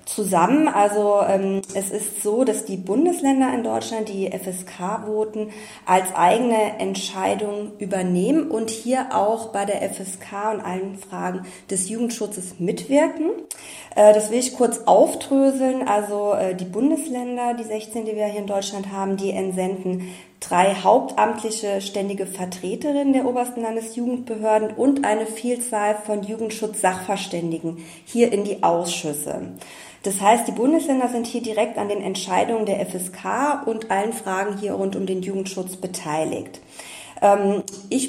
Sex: female